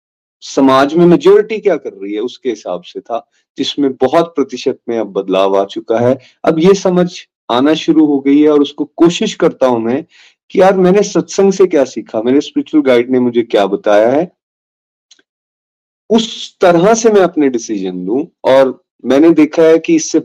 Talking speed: 185 wpm